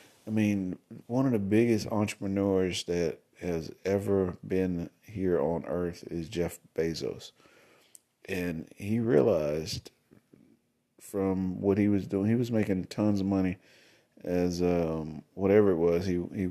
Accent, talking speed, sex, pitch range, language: American, 140 wpm, male, 85-100 Hz, English